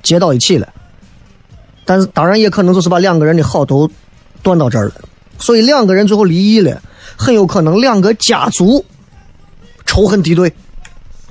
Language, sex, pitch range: Chinese, male, 145-215 Hz